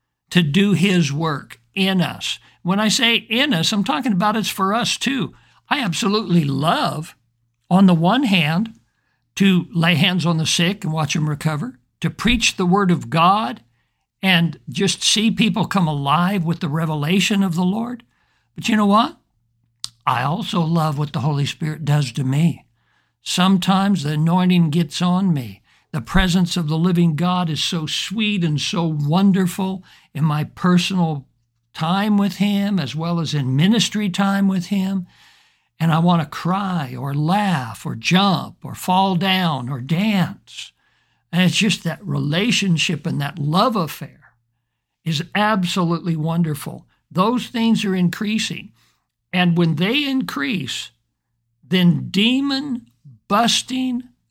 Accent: American